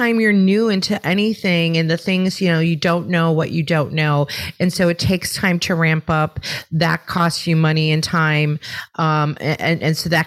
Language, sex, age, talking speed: English, female, 30-49, 205 wpm